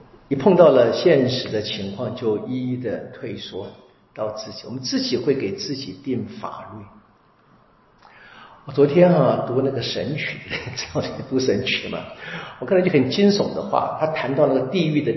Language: Chinese